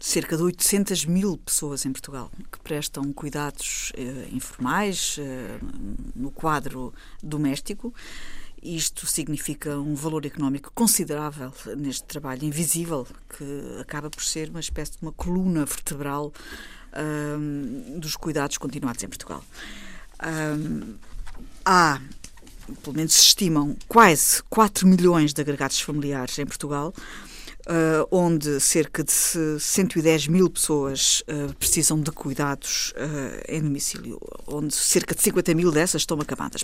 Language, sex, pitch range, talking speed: Portuguese, female, 145-180 Hz, 125 wpm